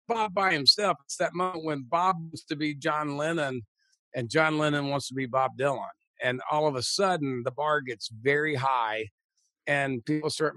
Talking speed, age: 195 wpm, 50-69